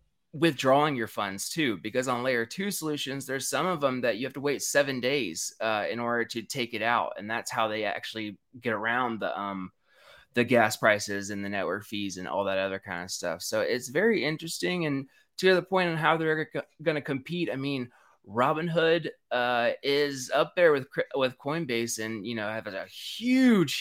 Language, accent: English, American